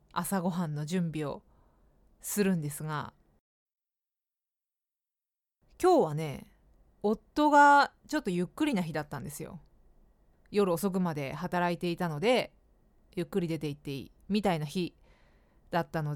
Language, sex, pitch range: Japanese, female, 160-230 Hz